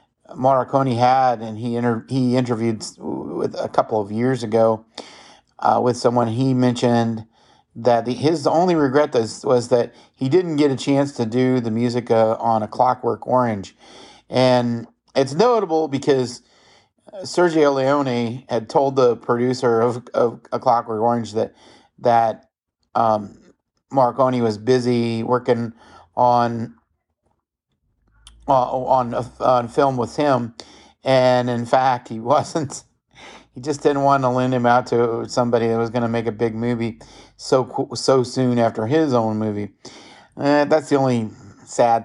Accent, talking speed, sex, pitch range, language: American, 145 wpm, male, 115-130 Hz, English